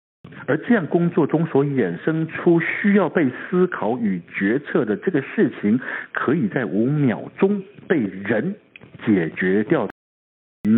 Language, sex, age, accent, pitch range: Chinese, male, 60-79, native, 110-180 Hz